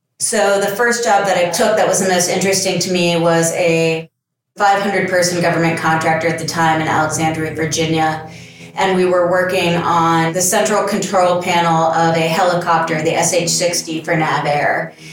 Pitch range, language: 165-185 Hz, English